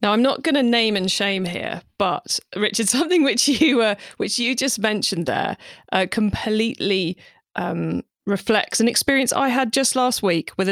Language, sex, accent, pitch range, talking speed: English, female, British, 180-240 Hz, 185 wpm